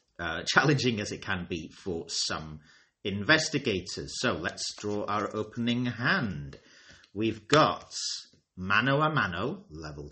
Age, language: 30-49, English